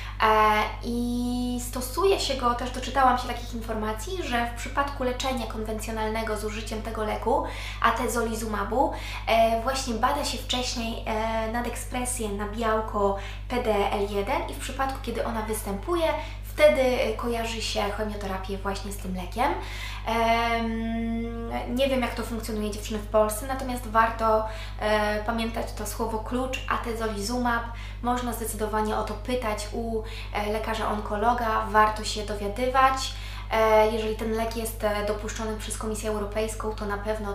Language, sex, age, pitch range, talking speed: Polish, female, 20-39, 205-240 Hz, 130 wpm